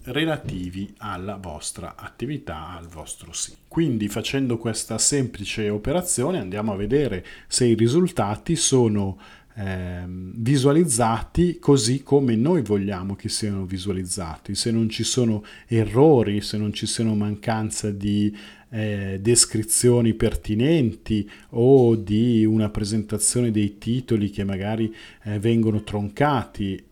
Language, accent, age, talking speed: Italian, native, 40-59, 120 wpm